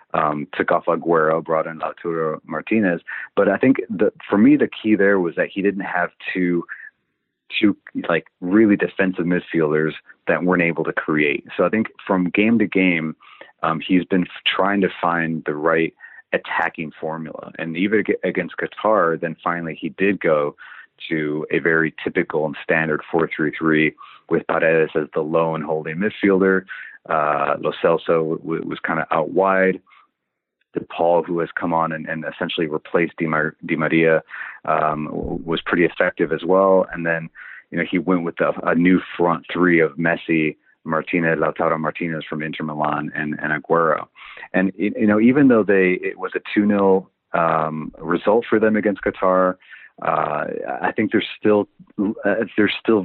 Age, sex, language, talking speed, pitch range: 30-49, male, English, 170 wpm, 80-95 Hz